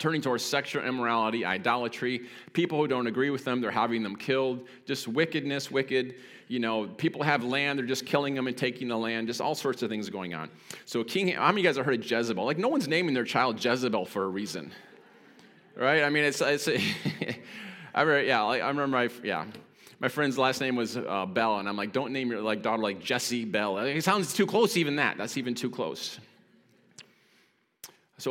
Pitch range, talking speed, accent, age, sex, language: 115-140 Hz, 215 wpm, American, 30-49, male, English